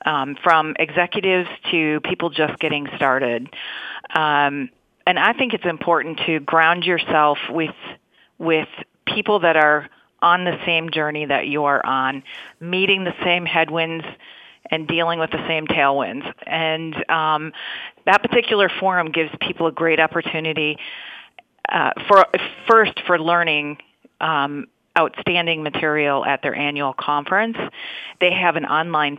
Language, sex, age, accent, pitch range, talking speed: English, female, 40-59, American, 150-180 Hz, 135 wpm